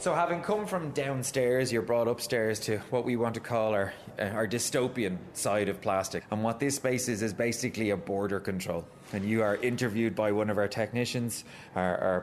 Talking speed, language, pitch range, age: 210 wpm, English, 110-140 Hz, 20-39